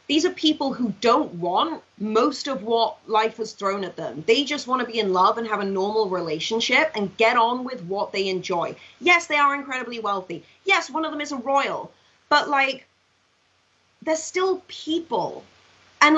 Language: English